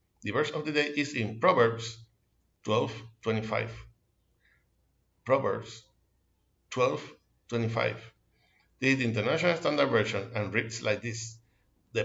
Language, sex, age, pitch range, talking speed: Spanish, male, 60-79, 110-125 Hz, 105 wpm